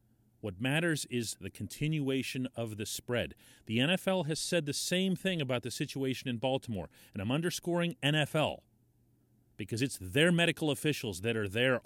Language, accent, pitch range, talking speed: English, American, 115-145 Hz, 160 wpm